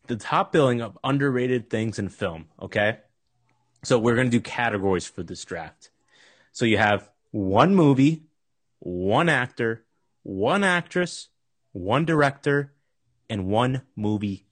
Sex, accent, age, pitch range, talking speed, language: male, American, 30-49, 100-130 Hz, 130 wpm, English